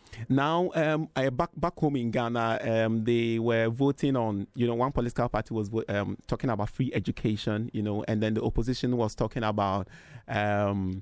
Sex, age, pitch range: male, 30-49, 115-140 Hz